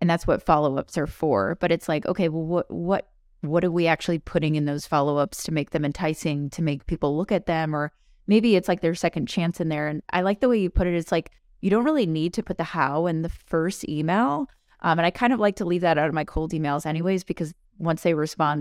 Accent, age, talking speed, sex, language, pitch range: American, 20-39, 260 wpm, female, English, 155-190 Hz